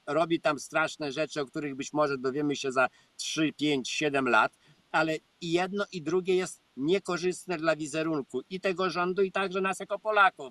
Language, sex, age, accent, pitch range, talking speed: Polish, male, 50-69, native, 155-185 Hz, 185 wpm